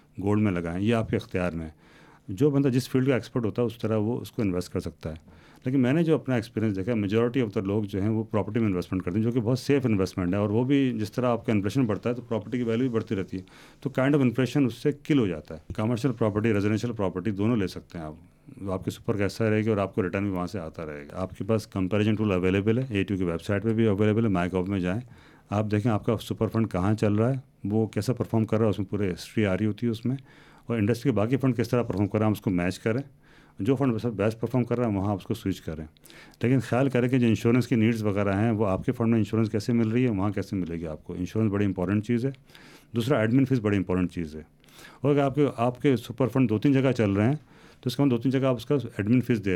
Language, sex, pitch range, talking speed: Urdu, male, 100-125 Hz, 220 wpm